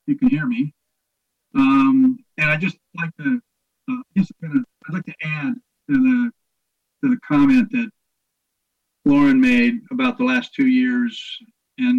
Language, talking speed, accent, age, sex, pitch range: English, 165 wpm, American, 50-69, male, 195-255 Hz